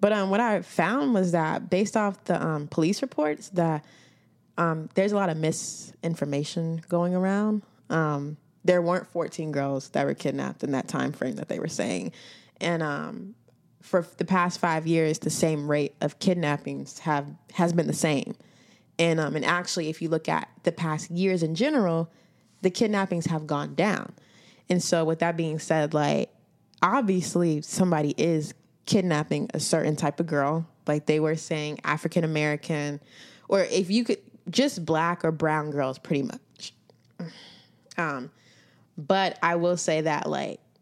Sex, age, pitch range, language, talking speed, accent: female, 20-39, 155-185 Hz, English, 170 wpm, American